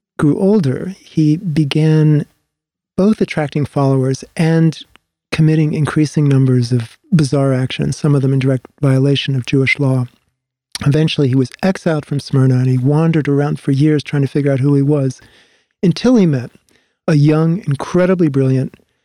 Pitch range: 135-160 Hz